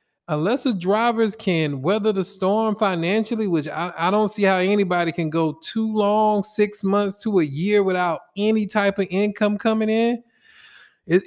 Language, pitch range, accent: English, 160-205 Hz, American